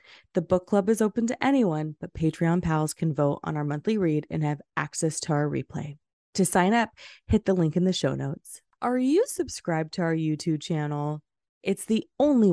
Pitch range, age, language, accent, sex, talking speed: 160-210 Hz, 20-39, English, American, female, 200 wpm